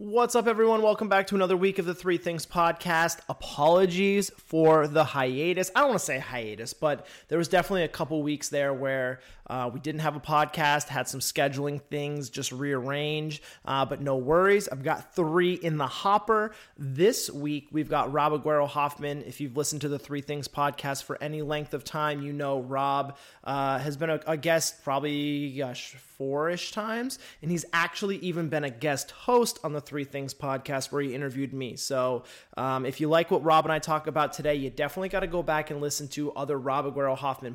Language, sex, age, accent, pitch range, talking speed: English, male, 30-49, American, 140-160 Hz, 210 wpm